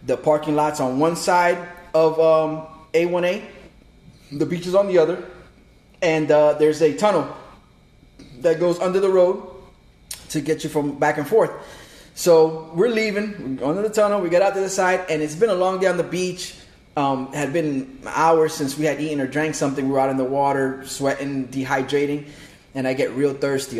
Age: 20-39